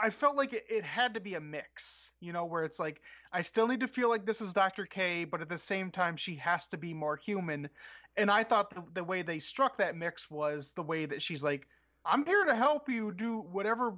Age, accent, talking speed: 30-49, American, 250 wpm